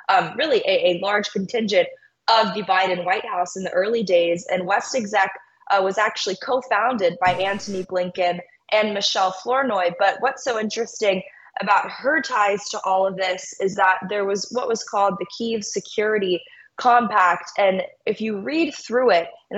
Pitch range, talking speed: 190-230 Hz, 175 wpm